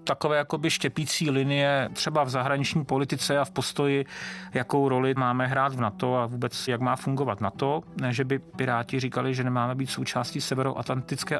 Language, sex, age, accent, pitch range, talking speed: Czech, male, 30-49, native, 130-150 Hz, 175 wpm